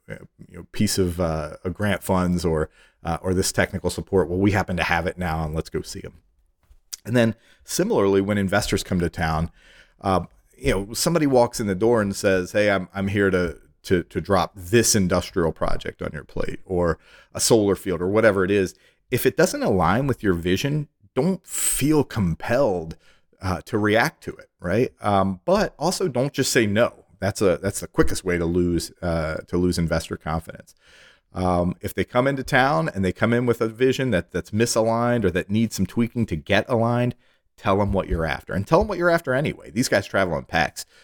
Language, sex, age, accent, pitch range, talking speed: English, male, 30-49, American, 85-115 Hz, 210 wpm